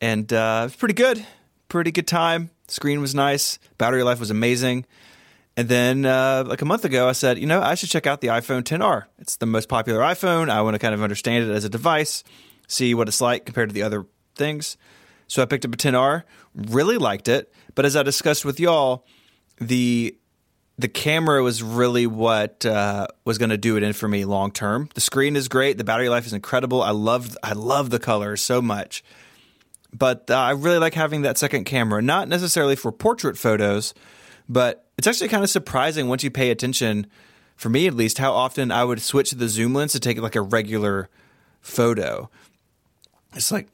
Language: English